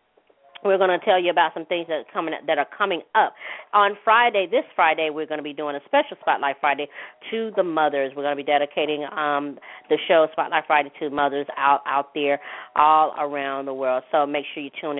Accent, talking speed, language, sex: American, 210 wpm, English, female